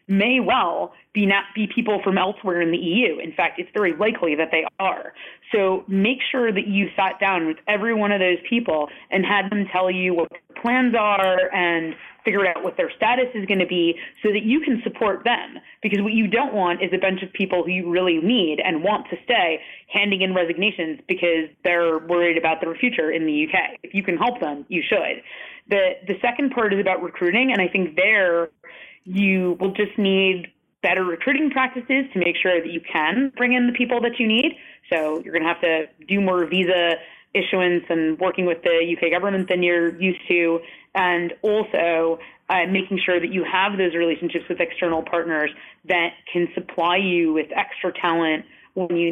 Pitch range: 170-205 Hz